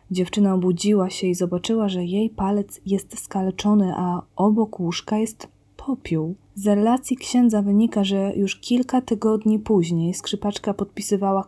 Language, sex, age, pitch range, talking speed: Polish, female, 20-39, 180-205 Hz, 135 wpm